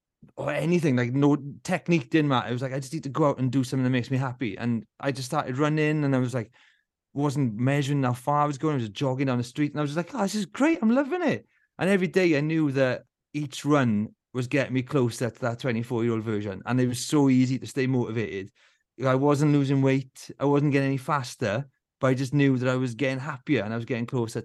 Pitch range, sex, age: 125-150 Hz, male, 30-49